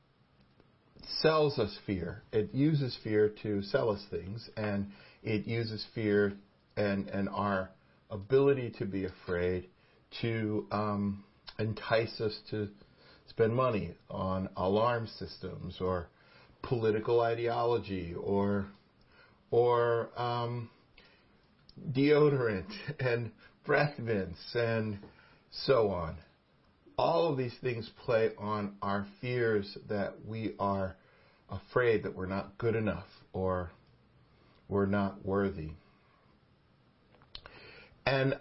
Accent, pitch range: American, 100-120 Hz